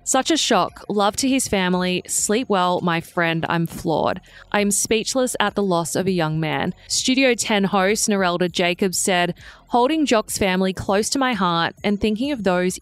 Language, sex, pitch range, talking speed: English, female, 180-230 Hz, 185 wpm